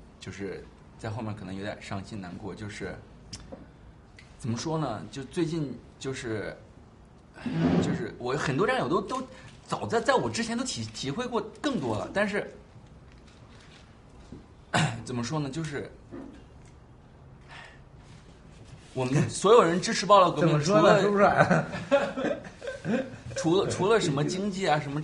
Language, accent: Chinese, native